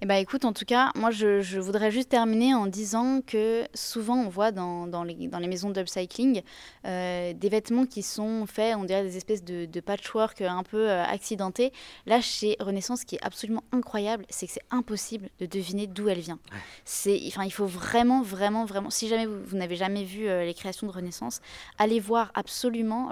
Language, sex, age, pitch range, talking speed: French, female, 20-39, 185-225 Hz, 210 wpm